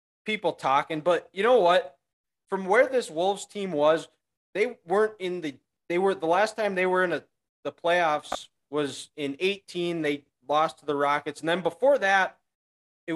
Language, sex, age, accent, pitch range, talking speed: English, male, 20-39, American, 160-200 Hz, 180 wpm